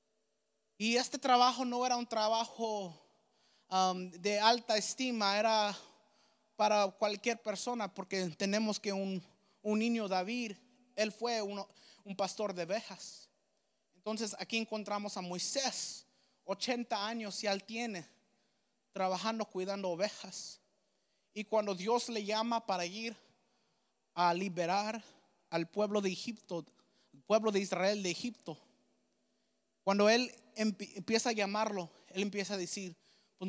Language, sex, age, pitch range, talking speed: English, male, 30-49, 190-225 Hz, 120 wpm